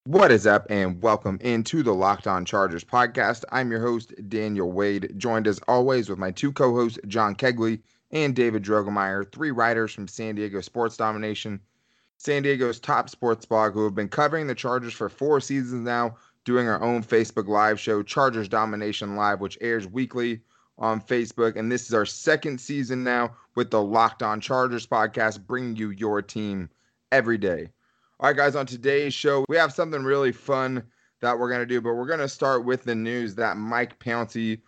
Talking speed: 190 wpm